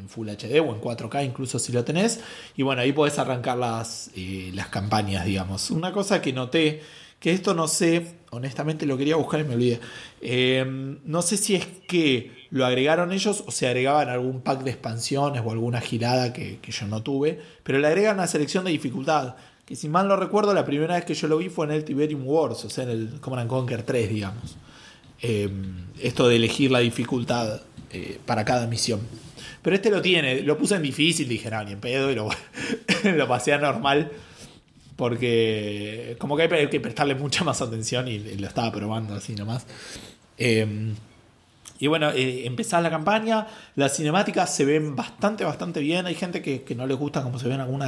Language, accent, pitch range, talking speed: Spanish, Argentinian, 115-155 Hz, 200 wpm